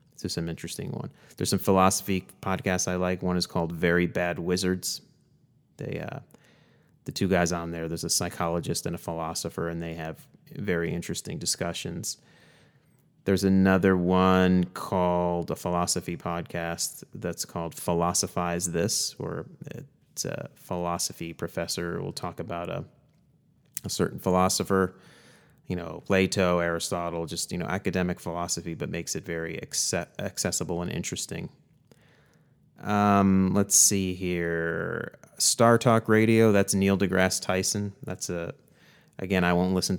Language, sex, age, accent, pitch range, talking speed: English, male, 30-49, American, 85-100 Hz, 140 wpm